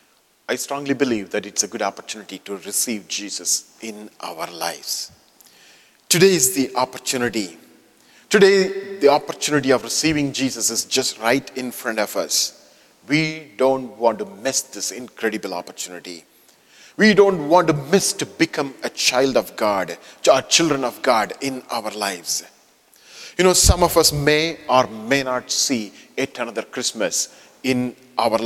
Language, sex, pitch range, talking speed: English, male, 115-175 Hz, 150 wpm